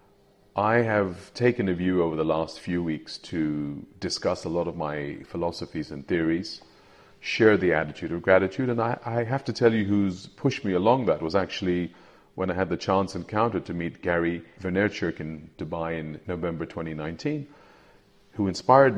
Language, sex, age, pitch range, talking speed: English, male, 40-59, 85-105 Hz, 175 wpm